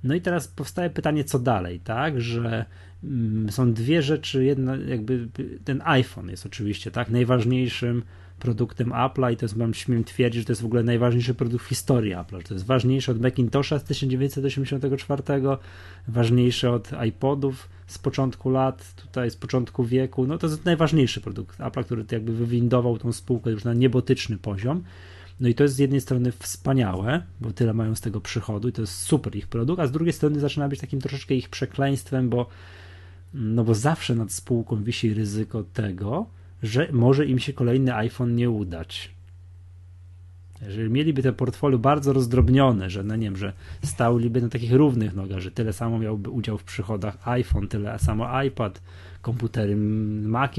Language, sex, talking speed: Polish, male, 175 wpm